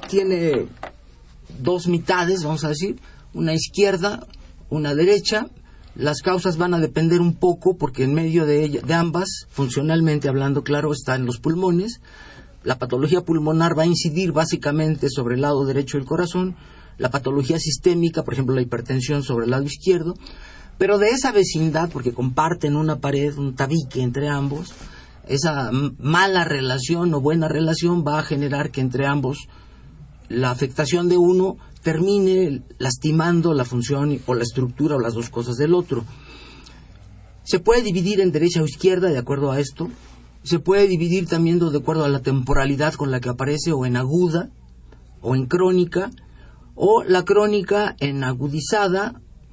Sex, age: male, 50-69